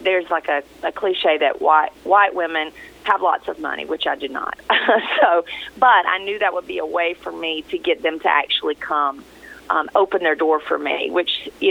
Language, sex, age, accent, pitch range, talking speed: English, female, 30-49, American, 160-230 Hz, 215 wpm